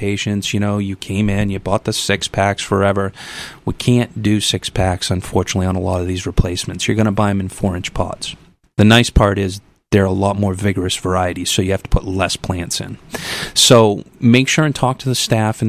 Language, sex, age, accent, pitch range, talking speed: English, male, 30-49, American, 100-120 Hz, 230 wpm